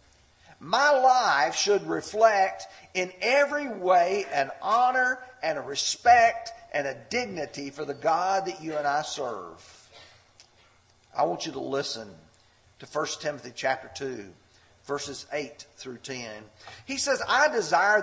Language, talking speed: English, 135 wpm